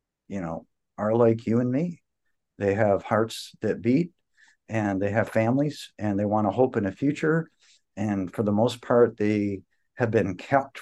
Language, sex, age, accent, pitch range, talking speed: English, male, 50-69, American, 100-120 Hz, 185 wpm